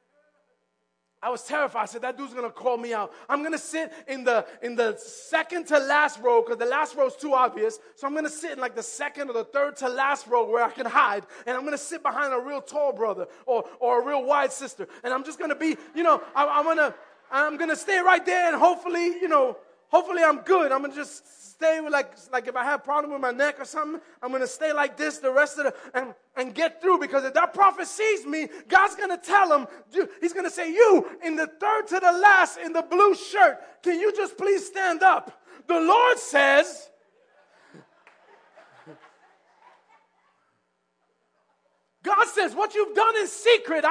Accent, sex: American, male